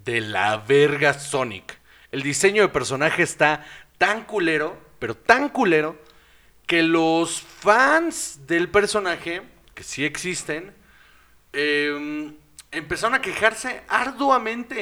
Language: Spanish